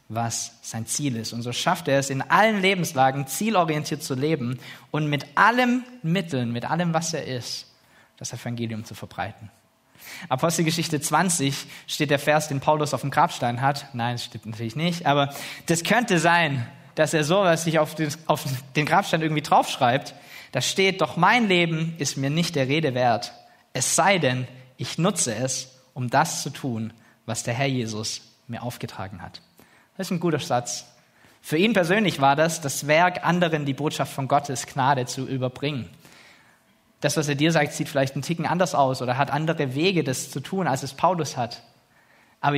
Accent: German